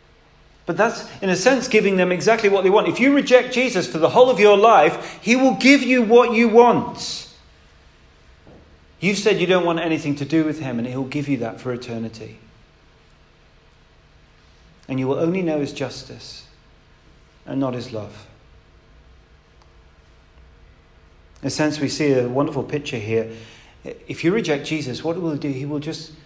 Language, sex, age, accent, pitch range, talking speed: English, male, 40-59, British, 110-155 Hz, 175 wpm